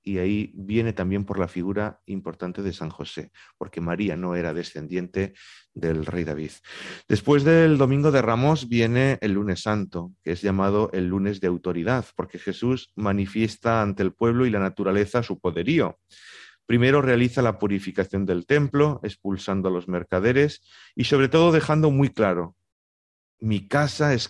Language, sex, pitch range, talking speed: Spanish, male, 95-120 Hz, 160 wpm